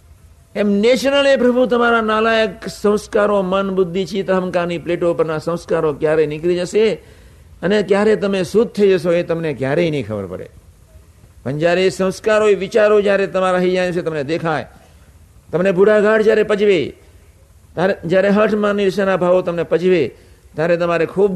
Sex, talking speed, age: male, 130 wpm, 50-69